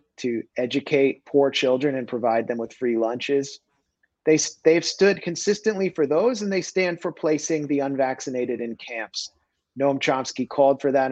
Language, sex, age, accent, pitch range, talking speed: English, male, 30-49, American, 120-155 Hz, 160 wpm